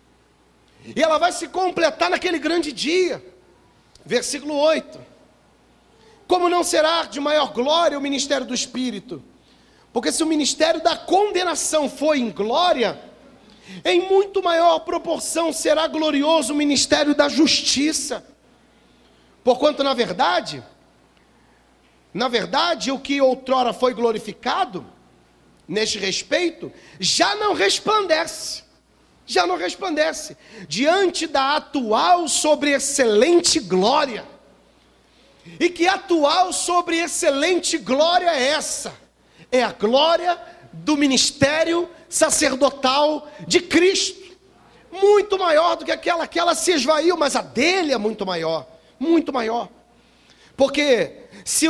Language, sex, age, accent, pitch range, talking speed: Portuguese, male, 40-59, Brazilian, 270-345 Hz, 115 wpm